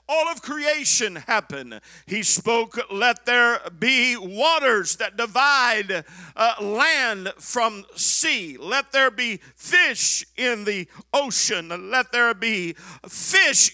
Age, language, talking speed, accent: 50-69, English, 120 wpm, American